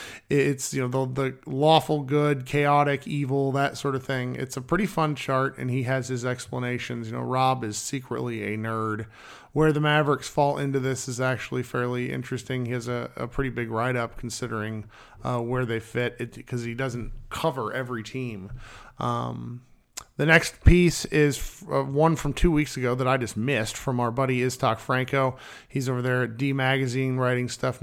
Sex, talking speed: male, 190 wpm